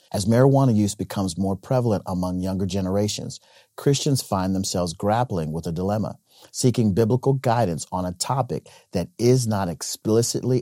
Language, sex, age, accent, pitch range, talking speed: English, male, 40-59, American, 95-115 Hz, 145 wpm